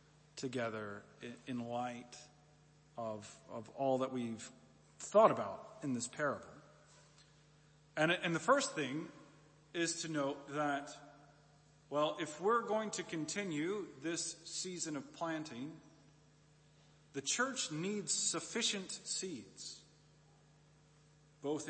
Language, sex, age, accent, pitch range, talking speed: English, male, 40-59, American, 145-160 Hz, 105 wpm